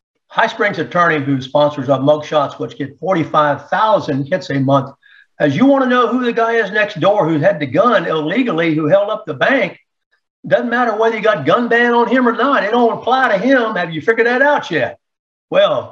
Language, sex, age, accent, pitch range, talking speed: English, male, 60-79, American, 140-170 Hz, 215 wpm